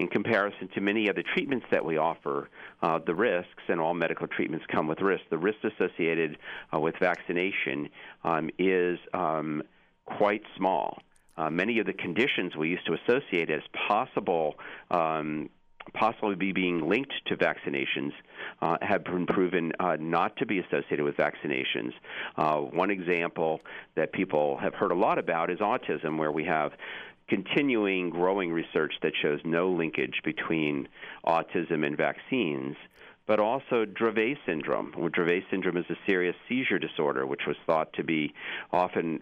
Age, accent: 50-69, American